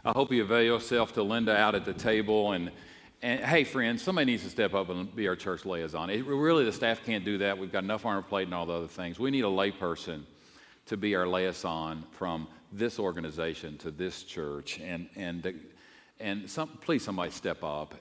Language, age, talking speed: English, 50-69, 215 wpm